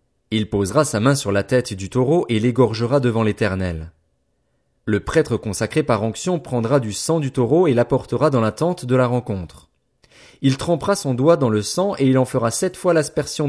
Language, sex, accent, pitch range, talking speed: French, male, French, 110-150 Hz, 200 wpm